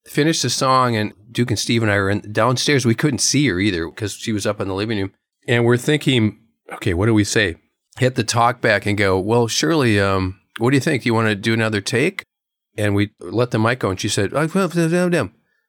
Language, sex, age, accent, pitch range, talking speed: English, male, 40-59, American, 105-145 Hz, 235 wpm